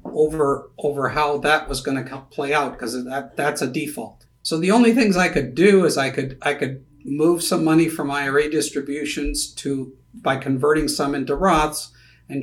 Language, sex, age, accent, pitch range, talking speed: English, male, 50-69, American, 135-160 Hz, 190 wpm